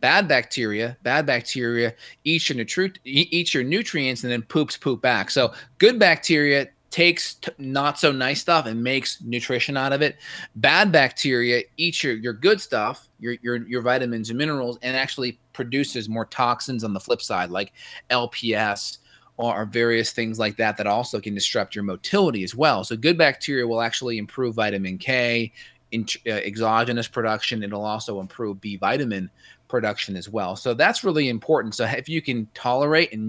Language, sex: English, male